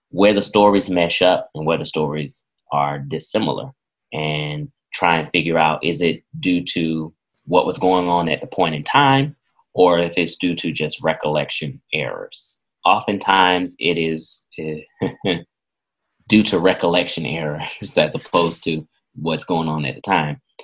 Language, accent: English, American